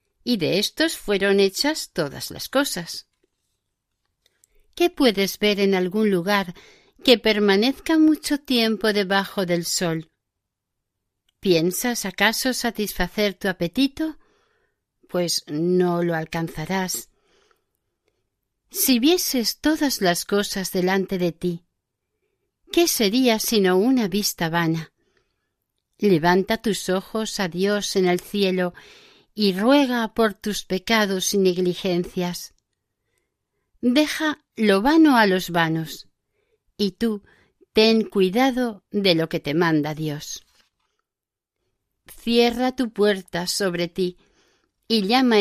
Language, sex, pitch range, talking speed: Spanish, female, 180-245 Hz, 110 wpm